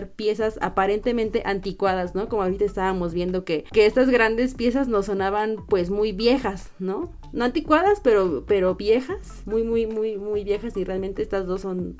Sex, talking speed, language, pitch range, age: female, 170 wpm, Spanish, 190-240 Hz, 20-39